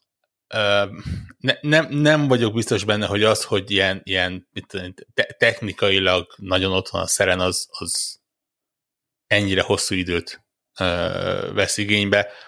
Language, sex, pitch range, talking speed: Hungarian, male, 95-115 Hz, 130 wpm